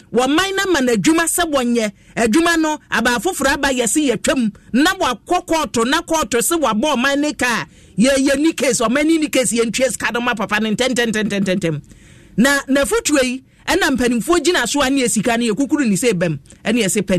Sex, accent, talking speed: male, Nigerian, 165 wpm